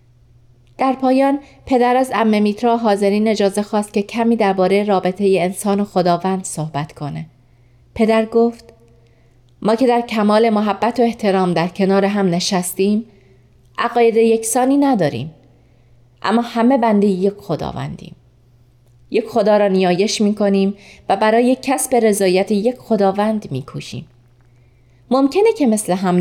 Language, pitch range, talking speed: Persian, 150-225 Hz, 125 wpm